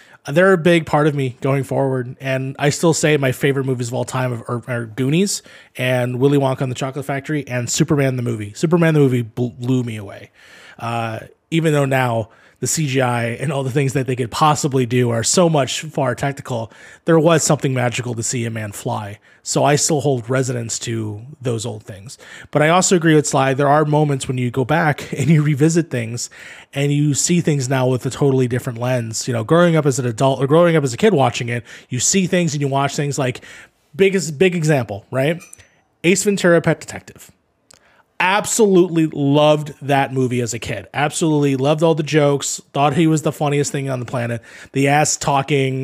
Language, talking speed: English, 205 wpm